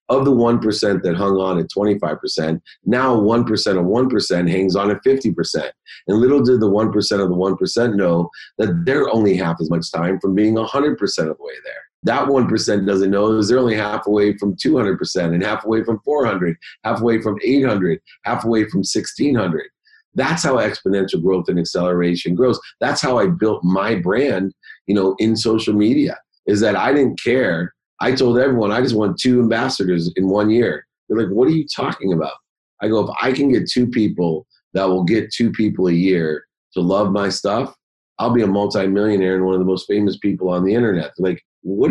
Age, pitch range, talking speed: 40-59, 95-120 Hz, 220 wpm